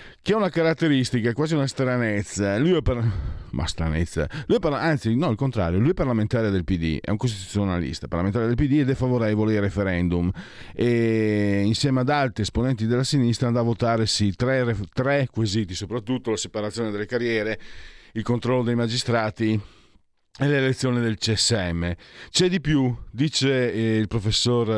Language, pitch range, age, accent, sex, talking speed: Italian, 100-125 Hz, 40-59, native, male, 135 wpm